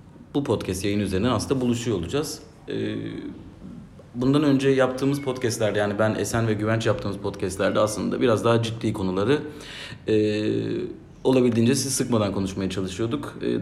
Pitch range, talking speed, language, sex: 105-130 Hz, 125 wpm, Turkish, male